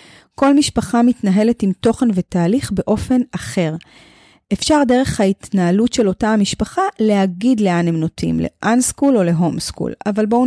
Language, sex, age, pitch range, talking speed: Hebrew, female, 30-49, 180-235 Hz, 145 wpm